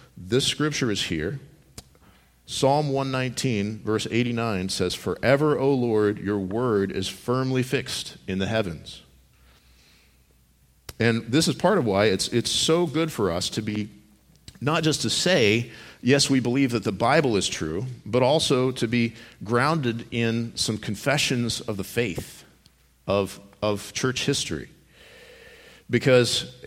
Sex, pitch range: male, 95-130 Hz